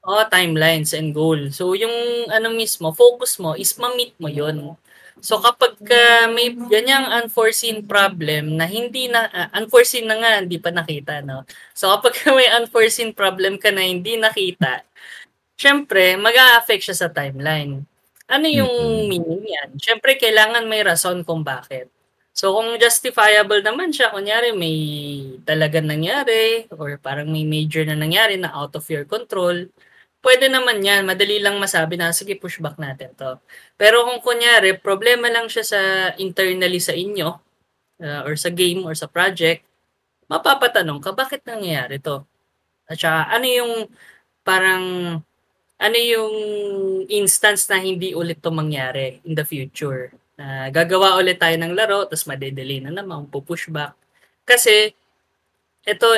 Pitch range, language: 160-230 Hz, Filipino